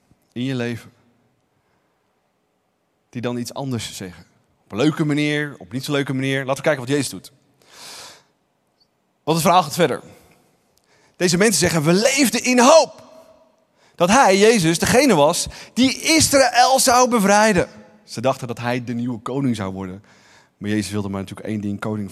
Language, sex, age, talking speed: Dutch, male, 30-49, 170 wpm